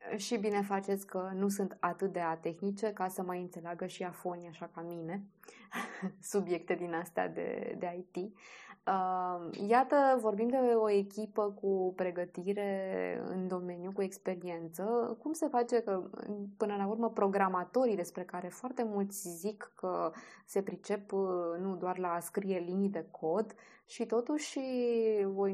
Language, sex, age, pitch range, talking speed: Romanian, female, 20-39, 180-215 Hz, 145 wpm